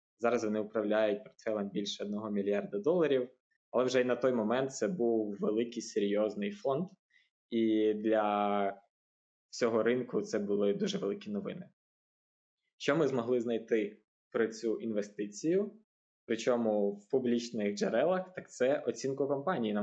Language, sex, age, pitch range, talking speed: Ukrainian, male, 20-39, 110-145 Hz, 135 wpm